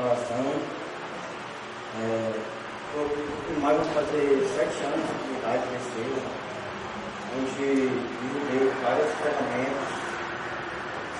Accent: Brazilian